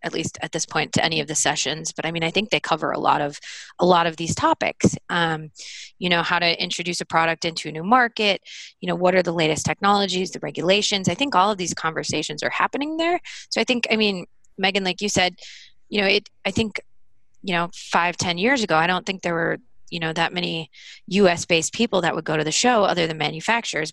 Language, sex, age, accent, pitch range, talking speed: English, female, 20-39, American, 160-200 Hz, 240 wpm